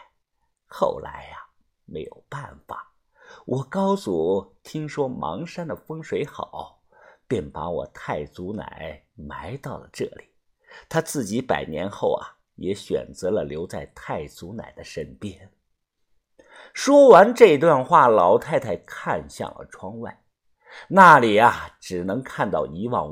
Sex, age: male, 50-69